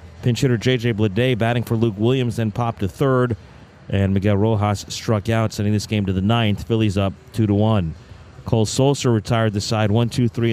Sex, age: male, 50-69